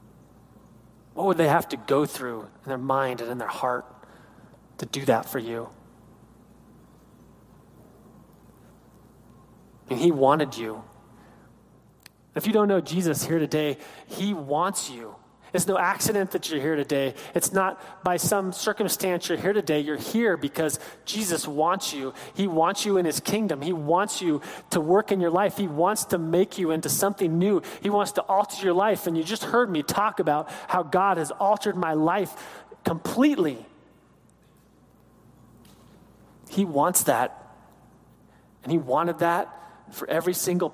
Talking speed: 155 wpm